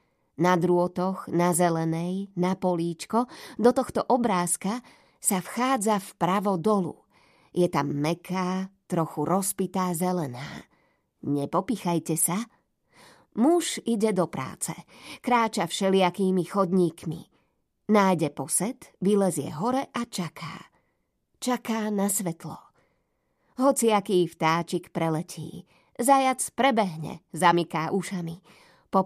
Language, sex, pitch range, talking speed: Slovak, female, 170-215 Hz, 95 wpm